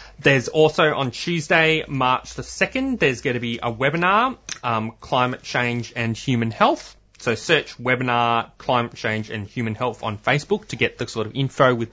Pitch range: 120-155 Hz